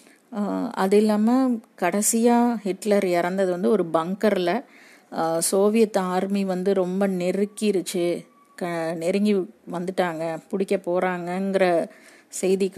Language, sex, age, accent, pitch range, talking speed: Tamil, female, 30-49, native, 180-225 Hz, 100 wpm